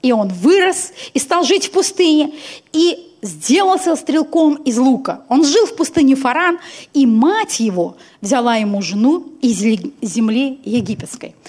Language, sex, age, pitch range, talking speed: Russian, female, 30-49, 235-335 Hz, 140 wpm